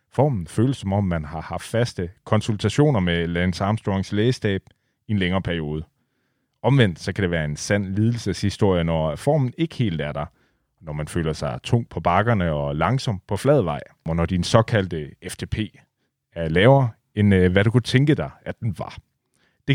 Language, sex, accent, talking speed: Danish, male, native, 180 wpm